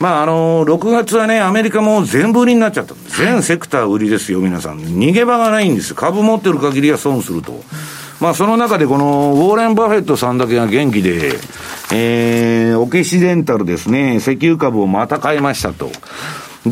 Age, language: 60-79, Japanese